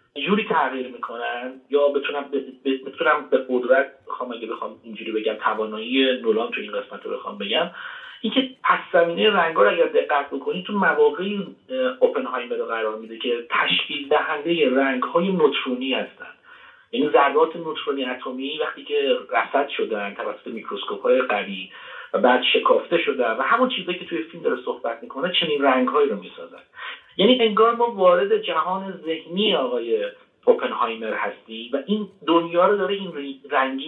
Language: Persian